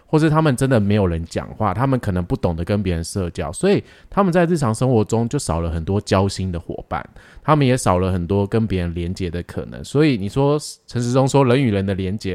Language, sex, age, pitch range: Chinese, male, 20-39, 95-135 Hz